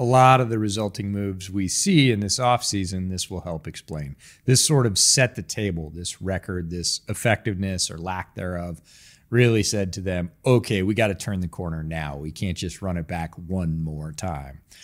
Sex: male